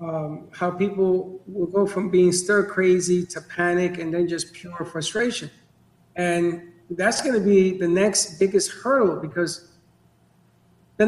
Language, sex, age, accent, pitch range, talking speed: English, male, 50-69, American, 170-210 Hz, 135 wpm